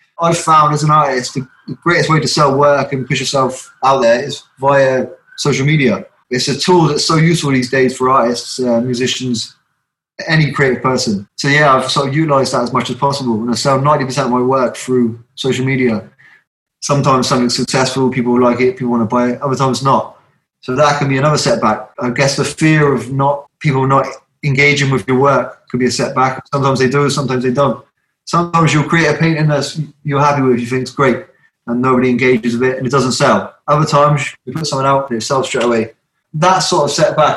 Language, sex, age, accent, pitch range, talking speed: English, male, 20-39, British, 125-145 Hz, 215 wpm